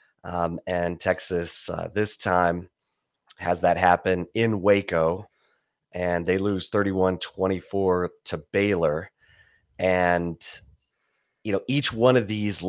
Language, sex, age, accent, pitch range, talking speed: English, male, 30-49, American, 85-100 Hz, 120 wpm